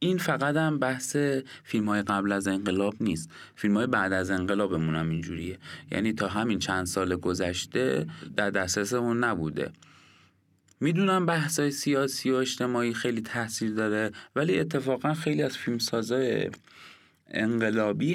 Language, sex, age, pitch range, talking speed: Persian, male, 30-49, 95-140 Hz, 130 wpm